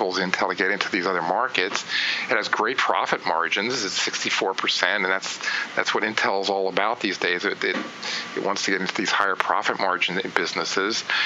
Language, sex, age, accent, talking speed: English, male, 40-59, American, 190 wpm